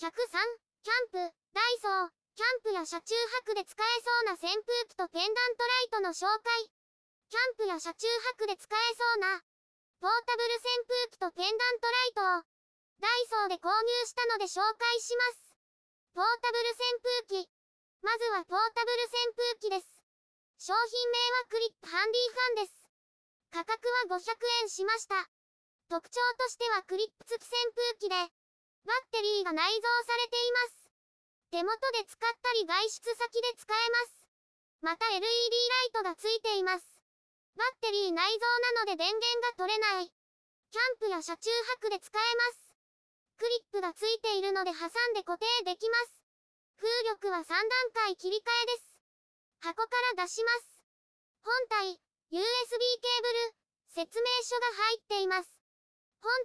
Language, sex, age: Japanese, male, 20-39